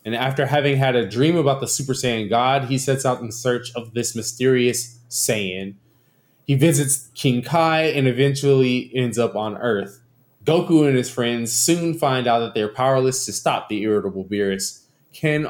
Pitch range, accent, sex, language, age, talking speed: 105-140 Hz, American, male, English, 20-39, 180 wpm